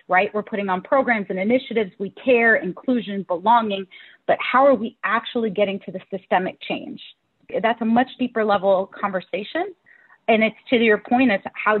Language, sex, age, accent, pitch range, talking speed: English, female, 30-49, American, 200-245 Hz, 175 wpm